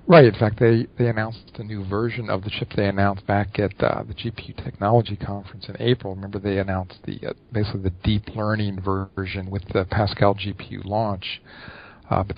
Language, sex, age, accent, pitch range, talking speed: English, male, 50-69, American, 100-115 Hz, 195 wpm